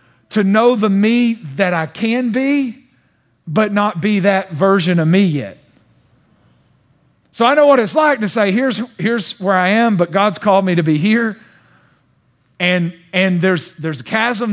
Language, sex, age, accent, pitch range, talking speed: English, male, 40-59, American, 160-220 Hz, 175 wpm